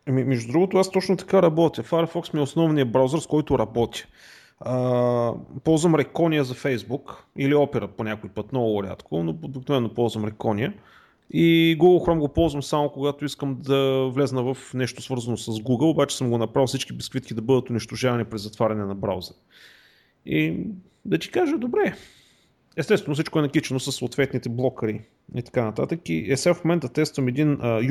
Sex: male